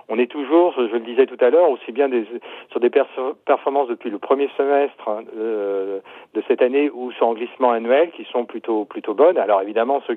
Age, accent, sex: 50-69, French, male